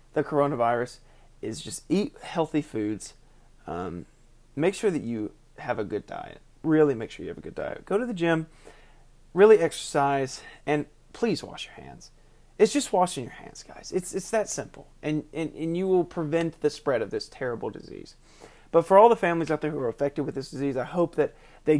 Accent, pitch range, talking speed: American, 130-160 Hz, 205 wpm